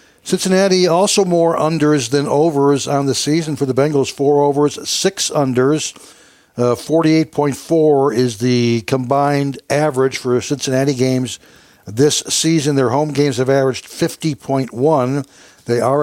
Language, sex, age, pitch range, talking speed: English, male, 60-79, 125-155 Hz, 130 wpm